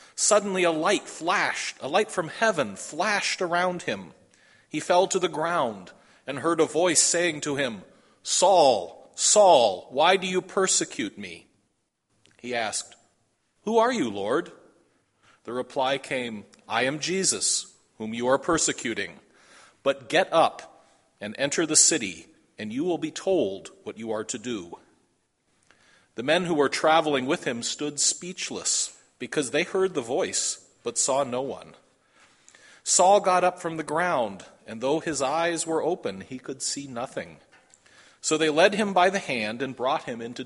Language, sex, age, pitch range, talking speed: English, male, 40-59, 130-180 Hz, 160 wpm